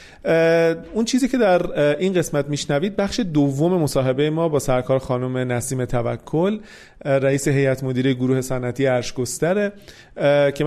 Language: Persian